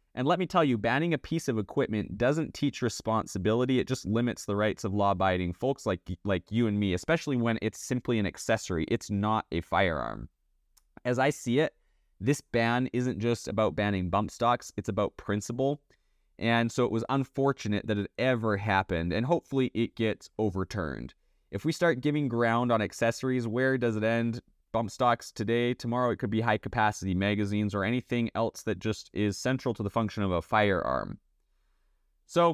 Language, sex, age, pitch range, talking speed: English, male, 30-49, 105-130 Hz, 185 wpm